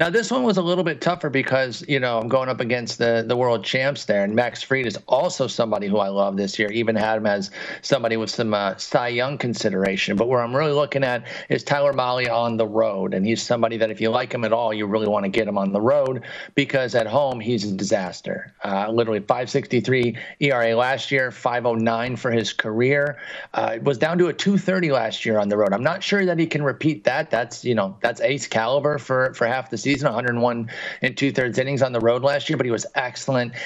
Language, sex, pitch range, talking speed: English, male, 115-145 Hz, 240 wpm